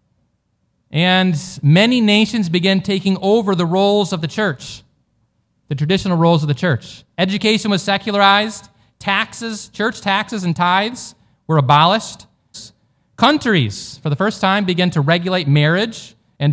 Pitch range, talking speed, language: 145-200 Hz, 135 wpm, English